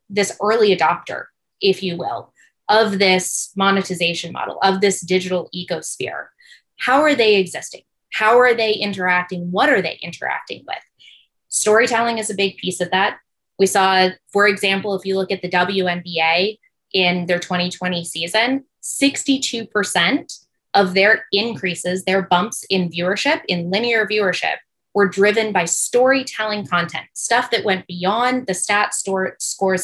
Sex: female